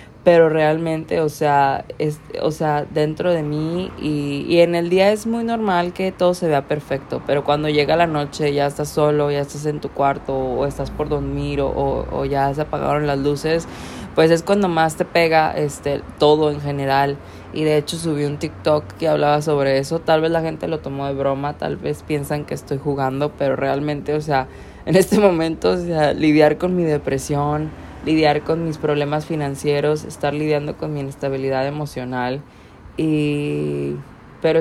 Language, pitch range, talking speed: Spanish, 145-180 Hz, 185 wpm